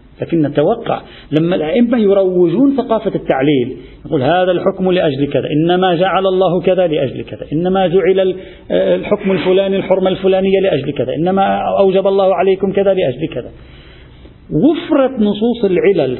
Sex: male